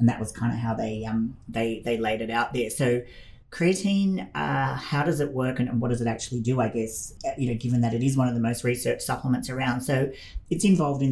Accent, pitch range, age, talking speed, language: Australian, 115-125 Hz, 30-49, 250 wpm, English